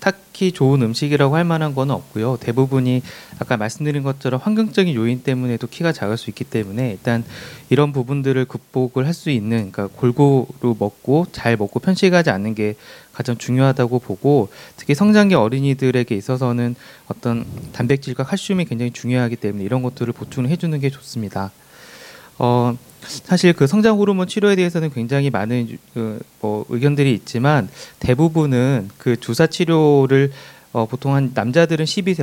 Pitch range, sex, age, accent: 120-155 Hz, male, 30-49, native